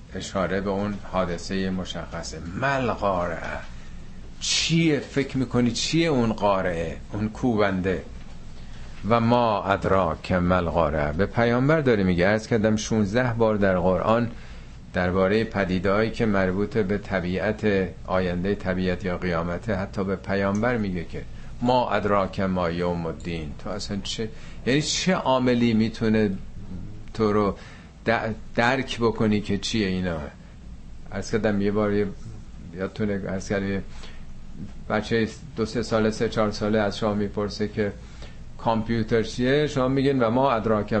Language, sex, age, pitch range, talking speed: Persian, male, 50-69, 90-110 Hz, 130 wpm